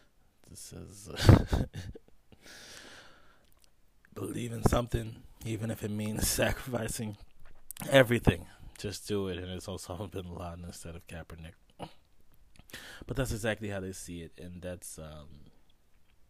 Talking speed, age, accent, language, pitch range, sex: 115 wpm, 20-39, American, English, 85-105 Hz, male